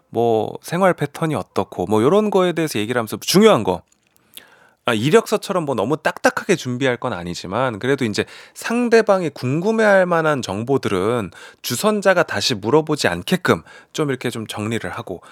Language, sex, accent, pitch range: Korean, male, native, 110-175 Hz